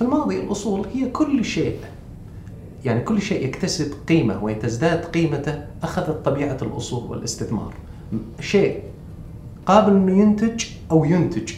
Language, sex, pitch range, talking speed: Arabic, male, 115-165 Hz, 120 wpm